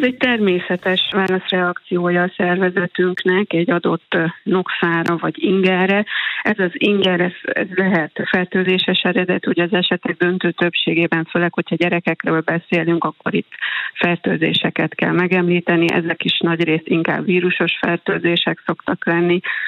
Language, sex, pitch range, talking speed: Hungarian, female, 170-185 Hz, 120 wpm